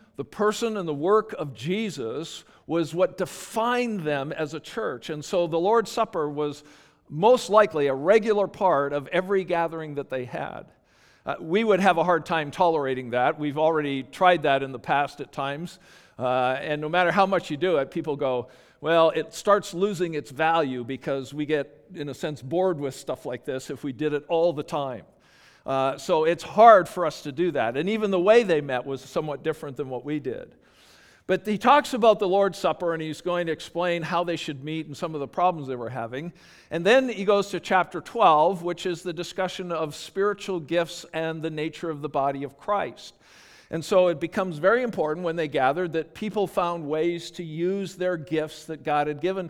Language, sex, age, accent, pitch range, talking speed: English, male, 50-69, American, 145-185 Hz, 210 wpm